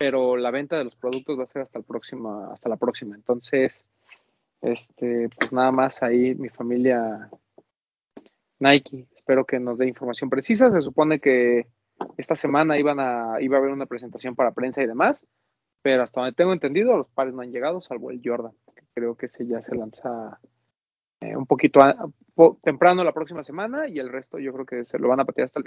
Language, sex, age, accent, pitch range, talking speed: Spanish, male, 30-49, Mexican, 125-170 Hz, 205 wpm